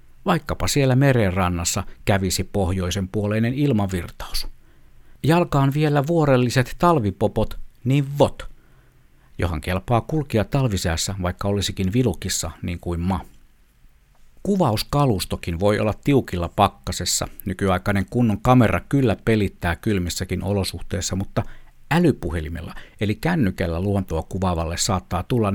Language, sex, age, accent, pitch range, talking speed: Finnish, male, 60-79, native, 90-125 Hz, 100 wpm